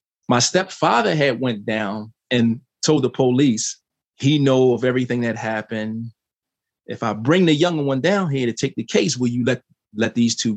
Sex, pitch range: male, 120-155 Hz